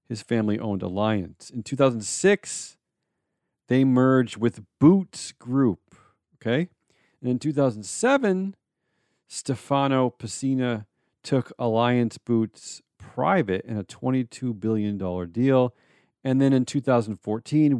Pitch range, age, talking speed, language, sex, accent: 110-155 Hz, 40-59, 100 wpm, English, male, American